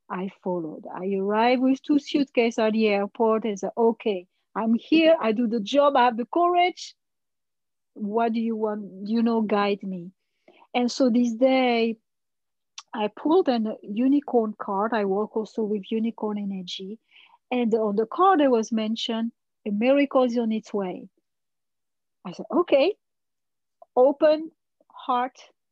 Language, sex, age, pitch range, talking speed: English, female, 40-59, 220-285 Hz, 150 wpm